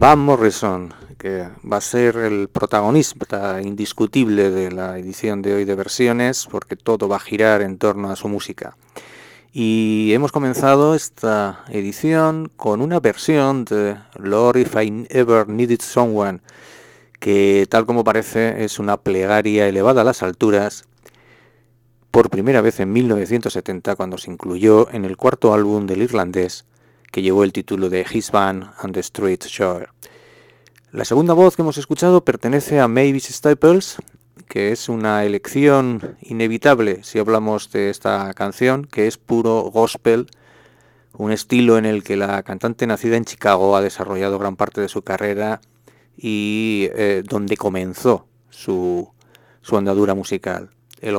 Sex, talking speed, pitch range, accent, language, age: male, 150 wpm, 100-120 Hz, Spanish, English, 40-59